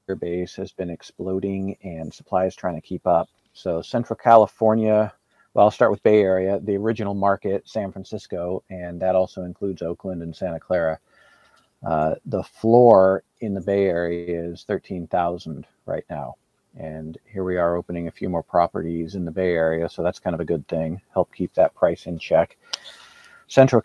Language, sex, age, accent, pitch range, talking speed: English, male, 50-69, American, 85-105 Hz, 175 wpm